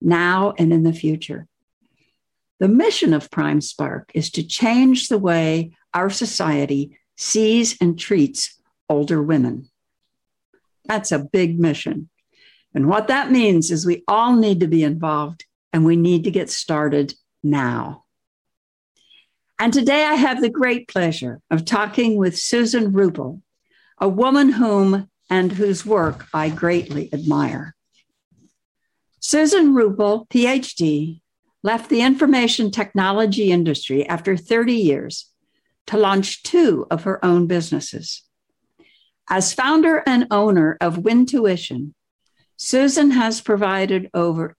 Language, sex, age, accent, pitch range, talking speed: English, female, 60-79, American, 165-225 Hz, 125 wpm